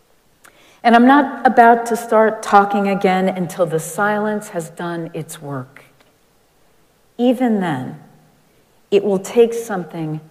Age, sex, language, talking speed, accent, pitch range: 50-69, female, English, 120 wpm, American, 160-230 Hz